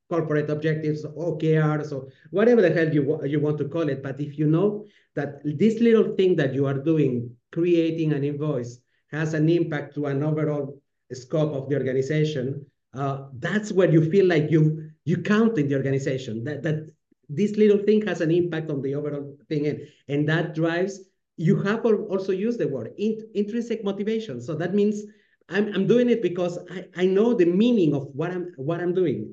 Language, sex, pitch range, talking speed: English, male, 145-185 Hz, 190 wpm